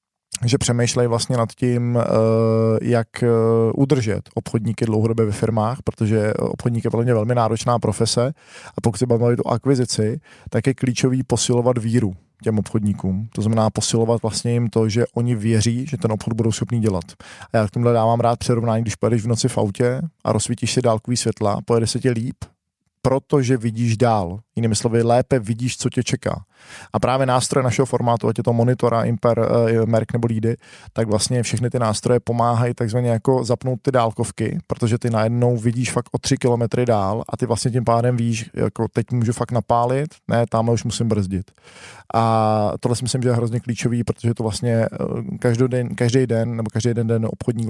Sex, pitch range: male, 110-125 Hz